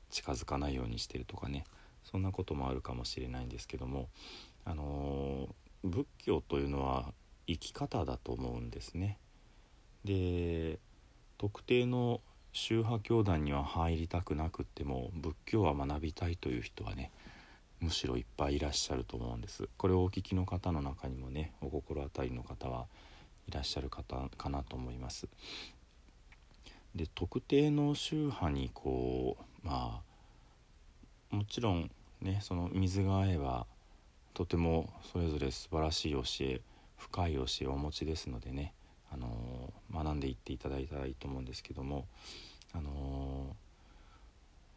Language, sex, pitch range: Japanese, male, 65-90 Hz